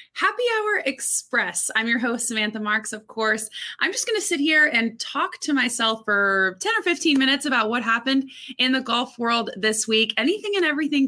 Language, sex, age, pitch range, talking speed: English, female, 20-39, 200-265 Hz, 200 wpm